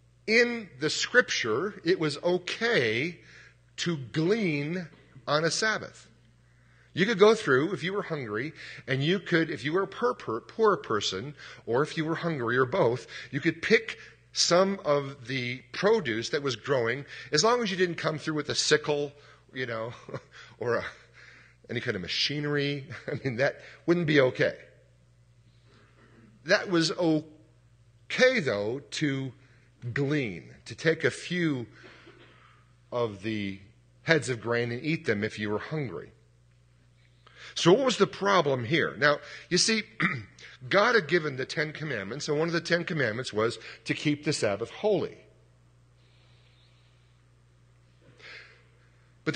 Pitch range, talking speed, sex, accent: 110-165 Hz, 145 wpm, male, American